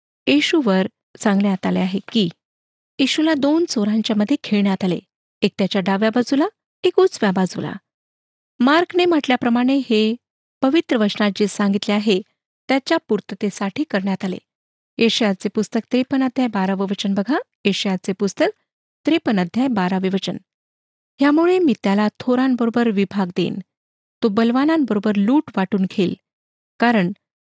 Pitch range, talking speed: 200-275 Hz, 115 wpm